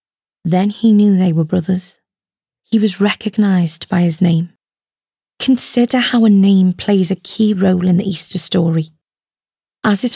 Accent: British